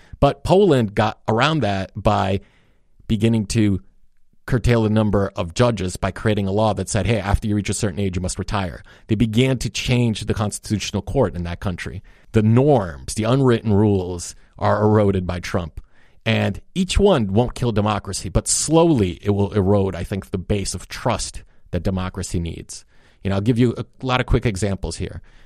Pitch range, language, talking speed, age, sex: 95-120 Hz, English, 185 wpm, 30-49, male